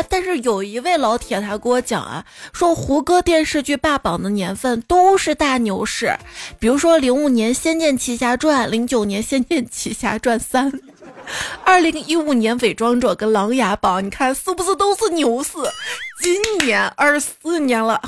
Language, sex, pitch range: Chinese, female, 240-320 Hz